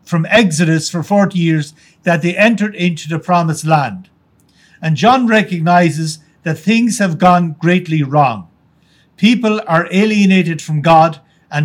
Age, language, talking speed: 60-79, English, 140 wpm